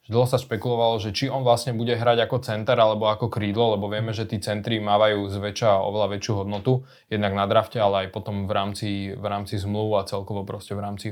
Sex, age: male, 20-39